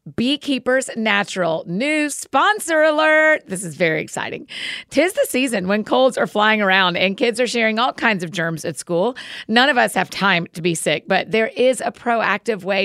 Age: 40-59